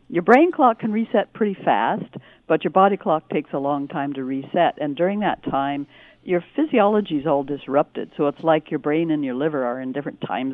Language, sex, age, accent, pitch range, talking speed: English, female, 60-79, American, 145-200 Hz, 215 wpm